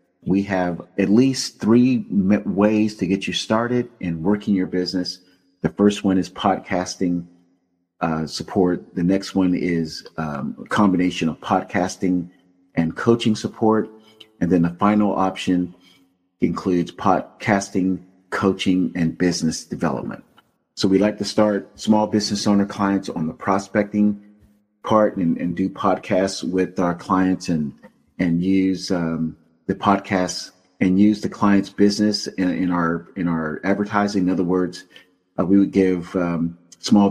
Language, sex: English, male